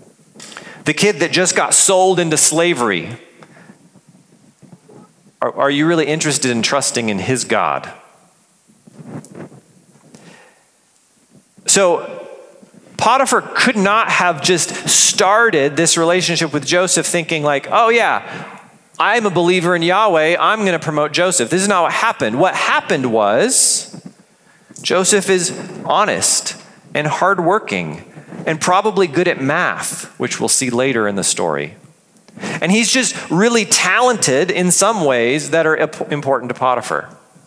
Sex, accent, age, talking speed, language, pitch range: male, American, 40-59, 130 wpm, English, 160-200 Hz